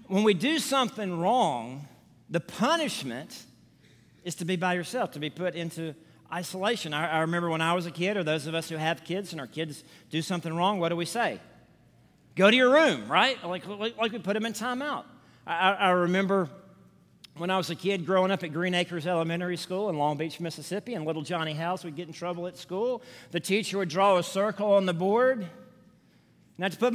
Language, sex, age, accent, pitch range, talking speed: English, male, 50-69, American, 160-215 Hz, 220 wpm